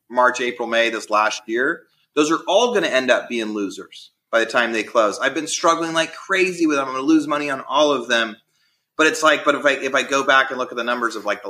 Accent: American